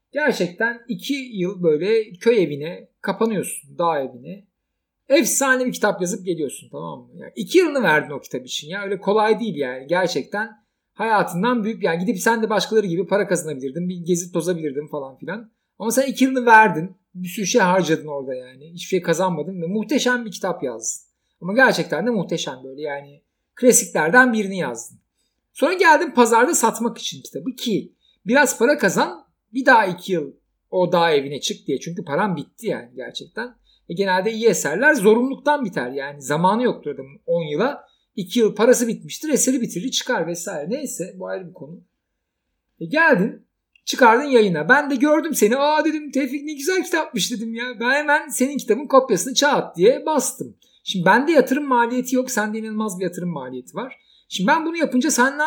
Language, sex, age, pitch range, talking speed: Turkish, male, 50-69, 175-255 Hz, 175 wpm